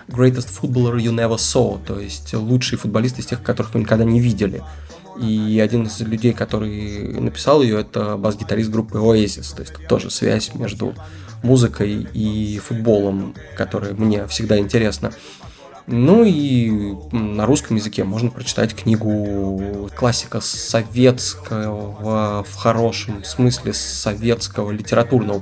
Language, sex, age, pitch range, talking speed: Russian, male, 20-39, 105-125 Hz, 125 wpm